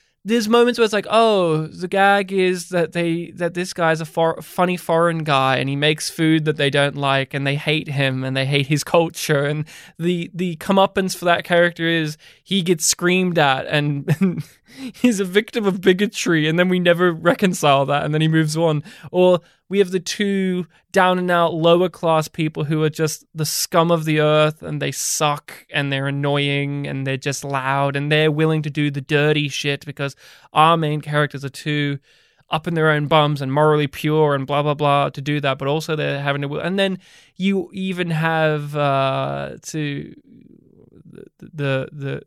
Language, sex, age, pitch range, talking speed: English, male, 20-39, 140-175 Hz, 195 wpm